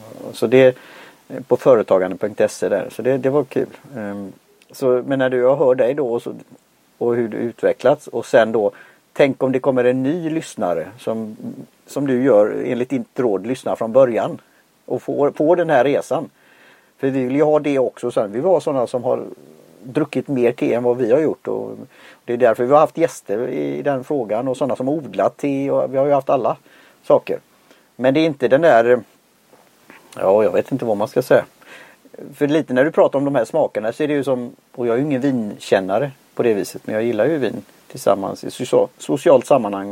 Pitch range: 115-145 Hz